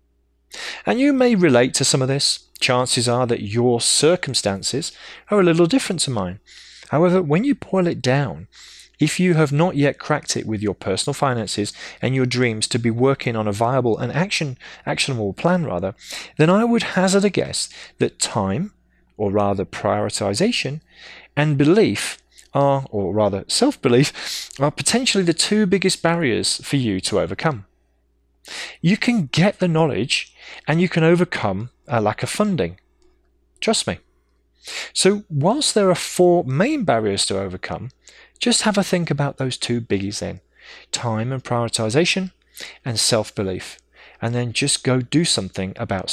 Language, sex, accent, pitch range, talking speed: English, male, British, 105-175 Hz, 160 wpm